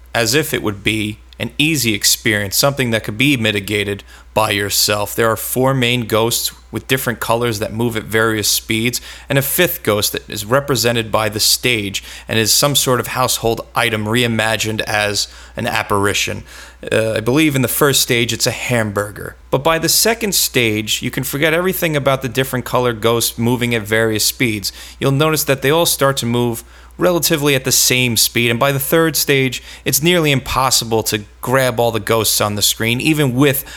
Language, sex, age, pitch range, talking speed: English, male, 30-49, 110-135 Hz, 190 wpm